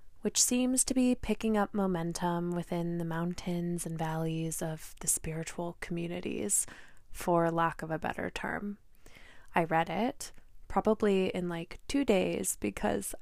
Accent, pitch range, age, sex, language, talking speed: American, 175-210 Hz, 20-39, female, English, 140 wpm